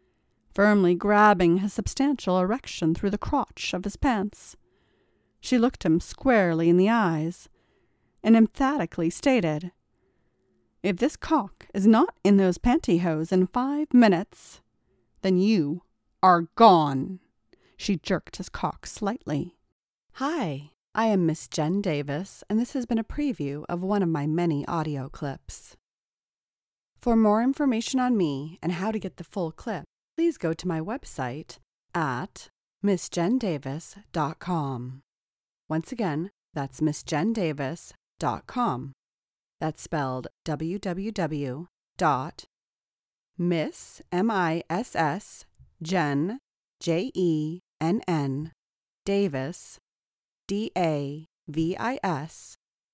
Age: 40-59